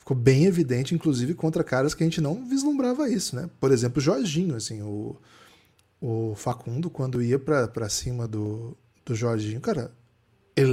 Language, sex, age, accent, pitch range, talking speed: Portuguese, male, 10-29, Brazilian, 120-150 Hz, 175 wpm